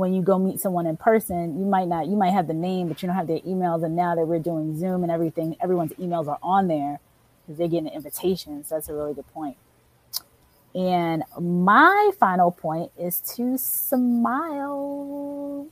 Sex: female